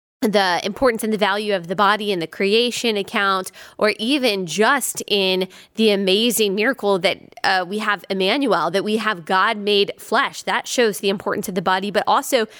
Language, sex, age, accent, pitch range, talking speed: English, female, 20-39, American, 195-230 Hz, 185 wpm